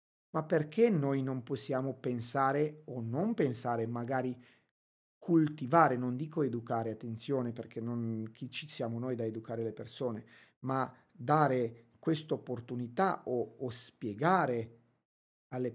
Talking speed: 120 wpm